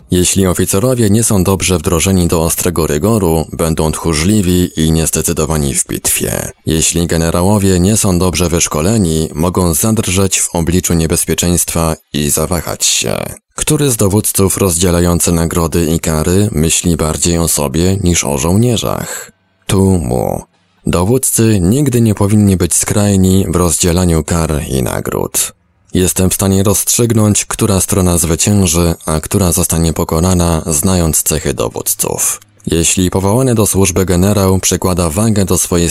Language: Polish